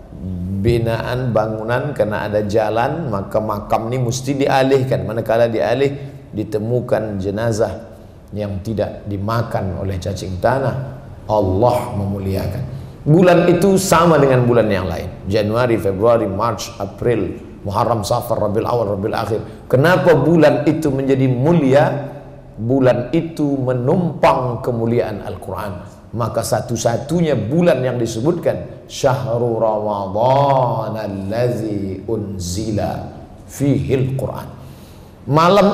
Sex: male